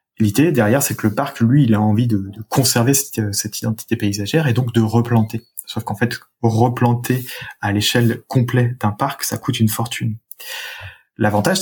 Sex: male